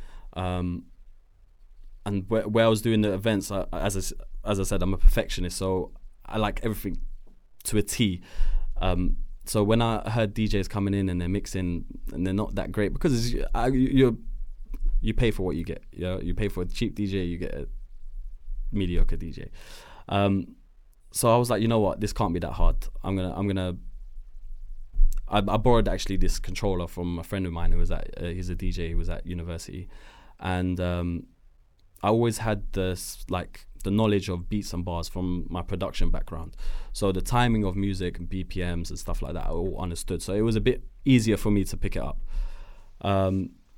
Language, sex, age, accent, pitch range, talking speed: English, male, 20-39, British, 90-110 Hz, 200 wpm